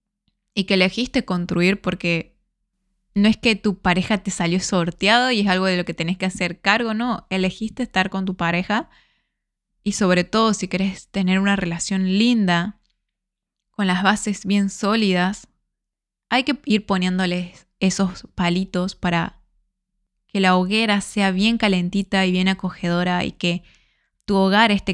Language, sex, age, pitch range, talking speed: Spanish, female, 10-29, 185-210 Hz, 155 wpm